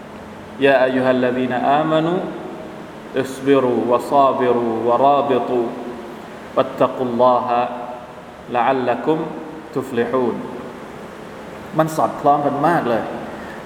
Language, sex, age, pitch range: Thai, male, 20-39, 130-175 Hz